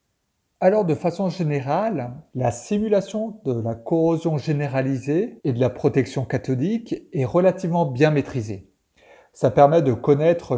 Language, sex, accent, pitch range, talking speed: French, male, French, 135-170 Hz, 130 wpm